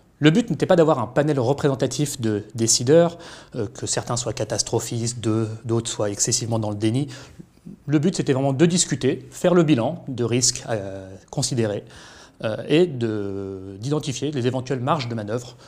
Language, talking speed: French, 155 wpm